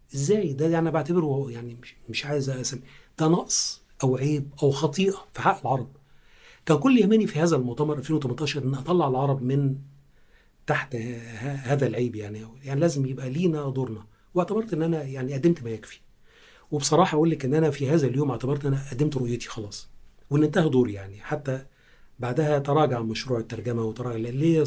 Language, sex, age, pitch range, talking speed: Arabic, male, 40-59, 120-145 Hz, 165 wpm